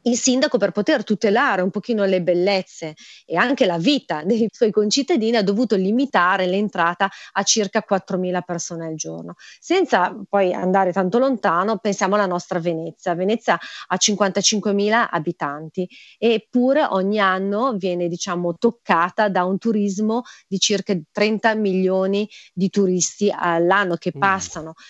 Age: 30-49